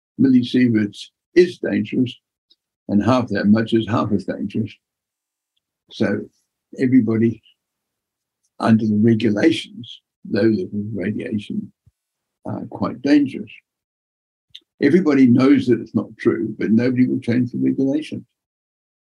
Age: 60-79